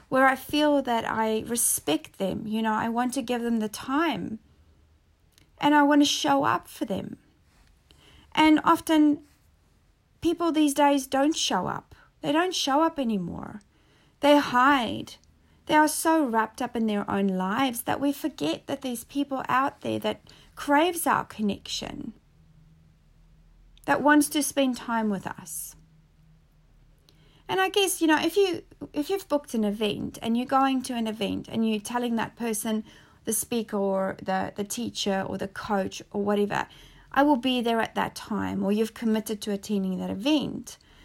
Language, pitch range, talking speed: English, 215-295 Hz, 170 wpm